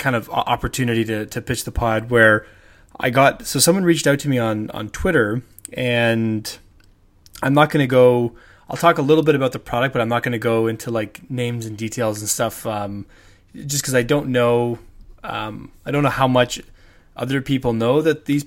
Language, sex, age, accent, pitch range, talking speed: English, male, 20-39, American, 110-135 Hz, 210 wpm